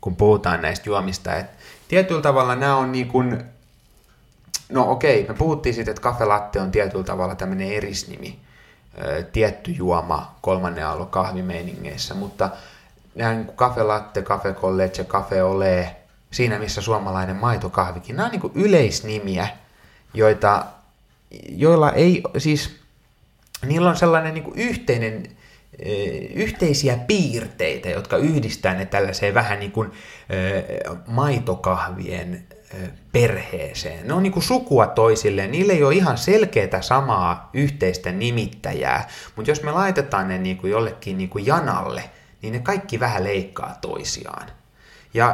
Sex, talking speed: male, 125 wpm